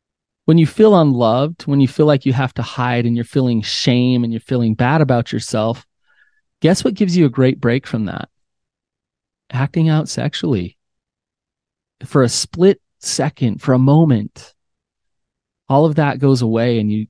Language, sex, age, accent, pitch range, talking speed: English, male, 30-49, American, 115-145 Hz, 170 wpm